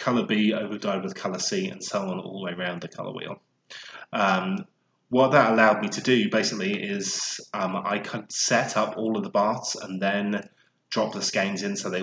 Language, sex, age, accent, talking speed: English, male, 20-39, British, 215 wpm